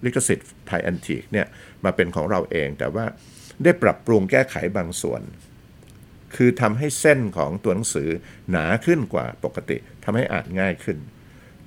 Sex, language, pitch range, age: male, Thai, 95-125 Hz, 60-79